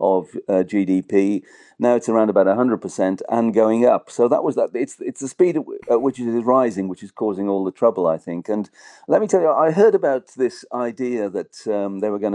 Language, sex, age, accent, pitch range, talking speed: English, male, 40-59, British, 100-125 Hz, 235 wpm